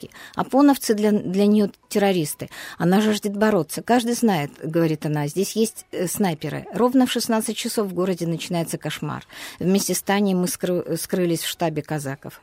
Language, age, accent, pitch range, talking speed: Russian, 50-69, native, 165-205 Hz, 150 wpm